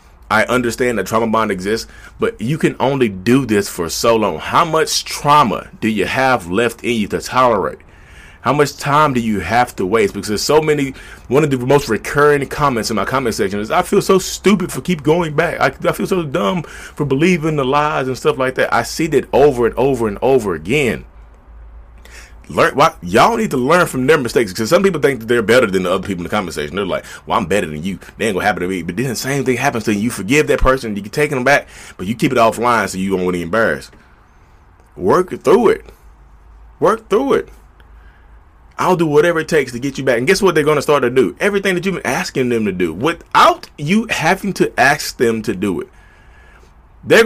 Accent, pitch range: American, 95-150 Hz